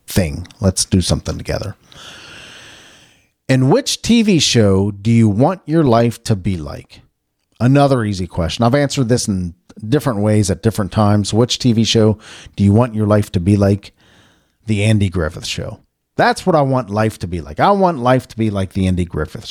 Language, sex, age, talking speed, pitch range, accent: English, male, 50-69, 190 wpm, 90-115 Hz, American